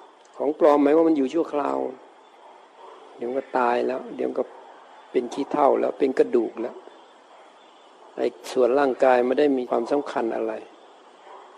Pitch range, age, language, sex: 120-155 Hz, 60-79, Thai, male